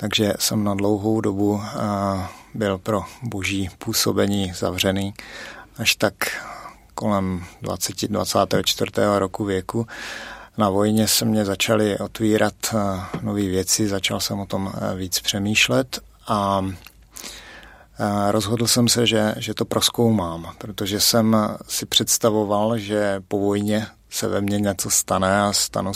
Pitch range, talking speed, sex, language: 100-110 Hz, 120 wpm, male, Czech